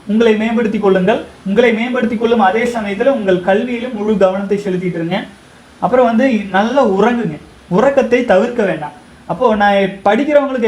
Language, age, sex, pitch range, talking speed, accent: Tamil, 30-49, male, 190-240 Hz, 130 wpm, native